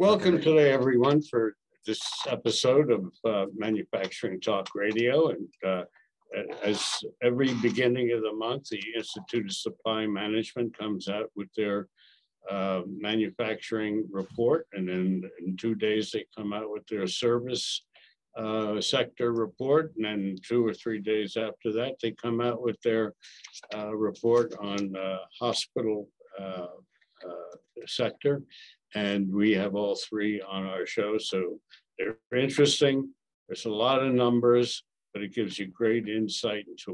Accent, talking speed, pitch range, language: American, 145 wpm, 100-120 Hz, English